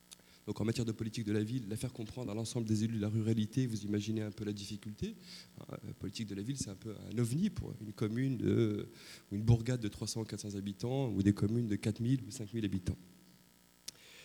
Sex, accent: male, French